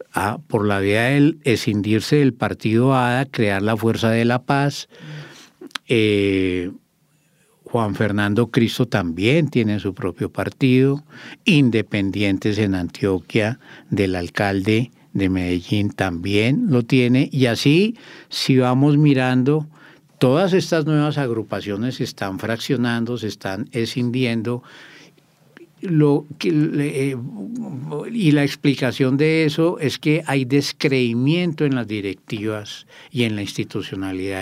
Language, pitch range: English, 110-145 Hz